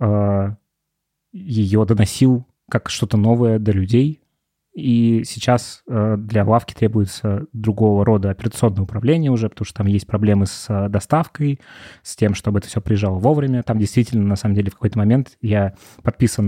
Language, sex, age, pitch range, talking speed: Russian, male, 20-39, 105-120 Hz, 155 wpm